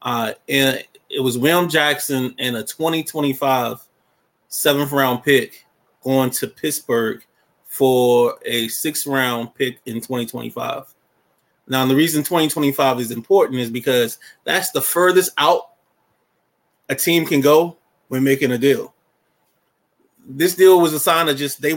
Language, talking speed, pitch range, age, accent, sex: English, 140 wpm, 130-155 Hz, 20-39, American, male